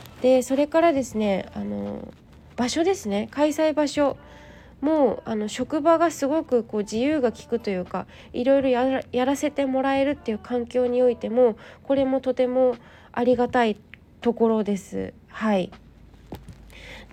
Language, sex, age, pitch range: Japanese, female, 20-39, 210-290 Hz